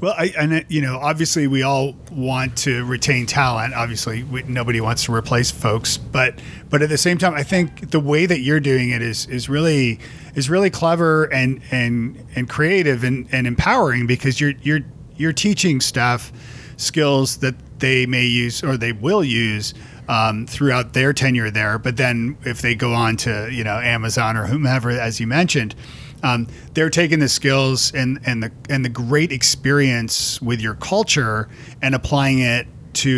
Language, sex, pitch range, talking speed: English, male, 120-150 Hz, 180 wpm